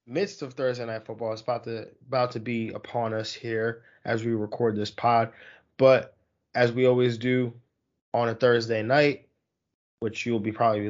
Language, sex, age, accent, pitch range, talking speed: English, male, 20-39, American, 110-130 Hz, 180 wpm